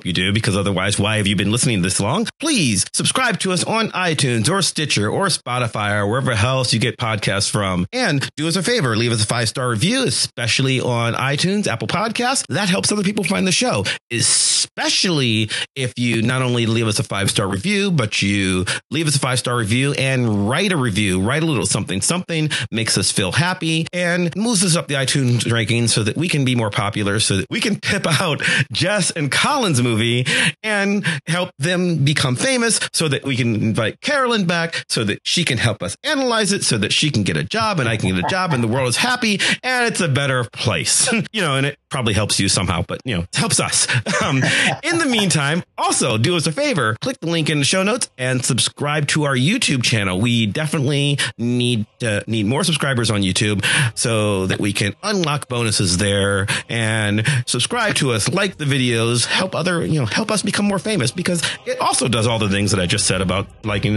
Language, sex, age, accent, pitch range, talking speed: English, male, 40-59, American, 110-170 Hz, 215 wpm